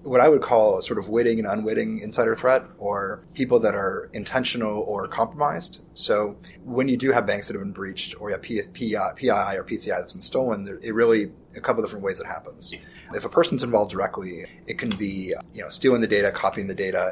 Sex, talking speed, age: male, 220 wpm, 30-49